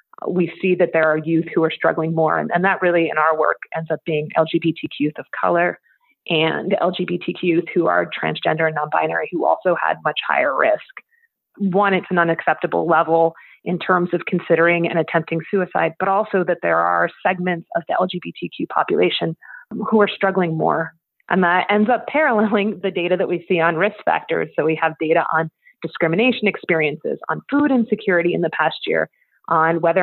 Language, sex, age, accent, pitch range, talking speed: English, female, 30-49, American, 160-185 Hz, 185 wpm